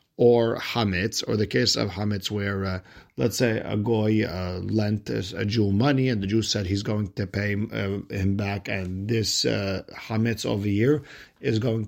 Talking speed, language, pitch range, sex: 190 wpm, English, 100-120 Hz, male